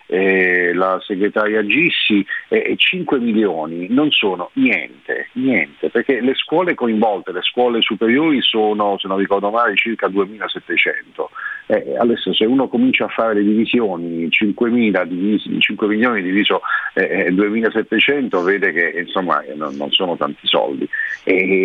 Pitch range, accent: 95-135 Hz, native